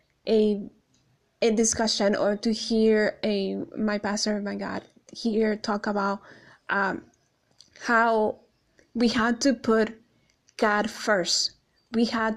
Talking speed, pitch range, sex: 115 wpm, 200-225 Hz, female